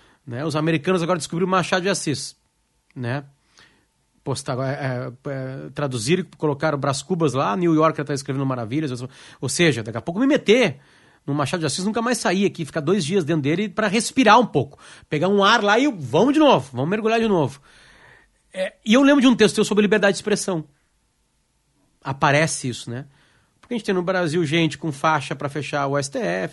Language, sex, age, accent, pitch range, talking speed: Portuguese, male, 30-49, Brazilian, 140-195 Hz, 190 wpm